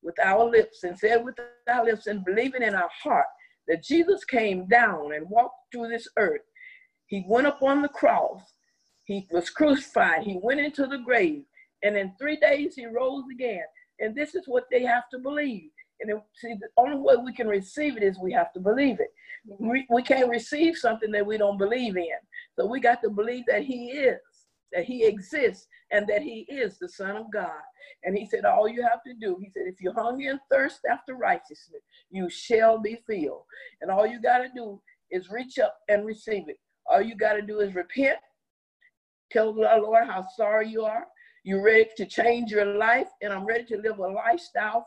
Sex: female